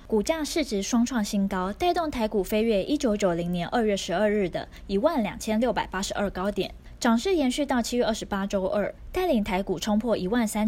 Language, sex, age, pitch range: Chinese, female, 20-39, 190-245 Hz